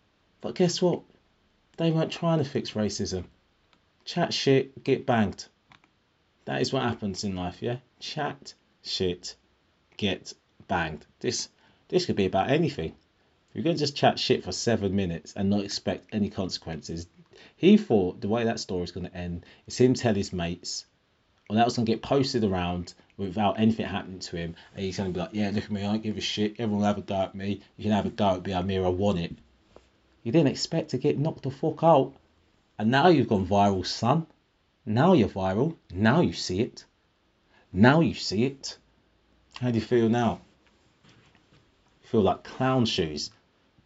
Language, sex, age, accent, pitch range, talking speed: English, male, 30-49, British, 90-125 Hz, 195 wpm